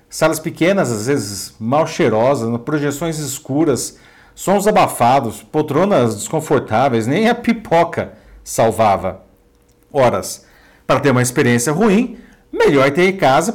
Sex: male